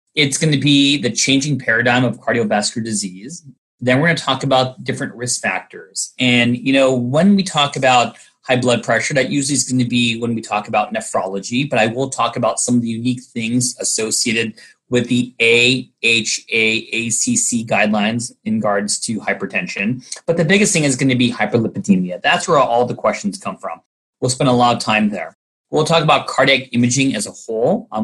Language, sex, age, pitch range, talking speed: English, male, 30-49, 115-140 Hz, 195 wpm